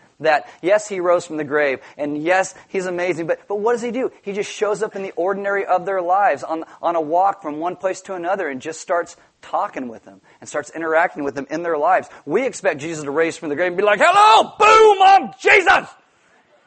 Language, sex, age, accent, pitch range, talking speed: English, male, 40-59, American, 175-245 Hz, 235 wpm